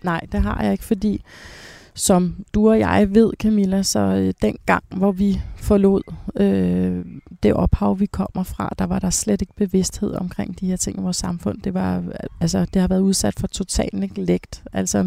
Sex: female